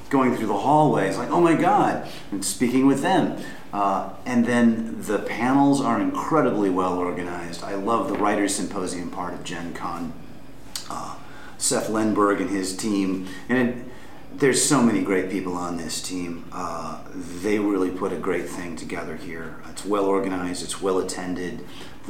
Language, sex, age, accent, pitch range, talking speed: English, male, 40-59, American, 90-115 Hz, 155 wpm